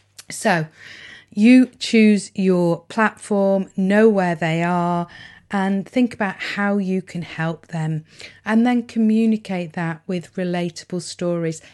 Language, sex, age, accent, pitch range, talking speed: English, female, 40-59, British, 175-225 Hz, 125 wpm